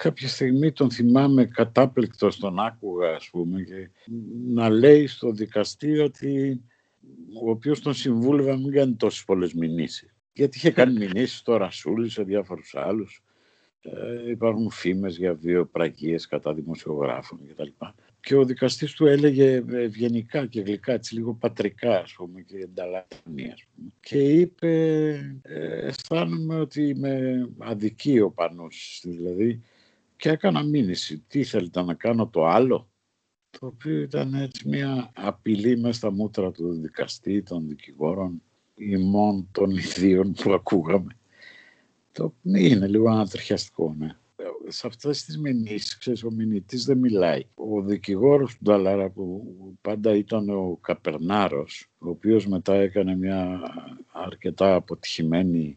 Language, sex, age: Greek, male, 60-79